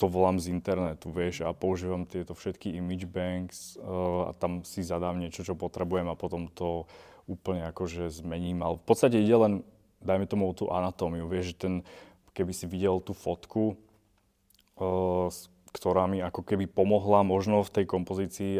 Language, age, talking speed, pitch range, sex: Slovak, 20-39, 170 wpm, 85-95 Hz, male